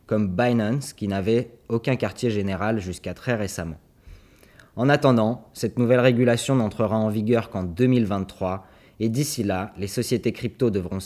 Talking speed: 145 wpm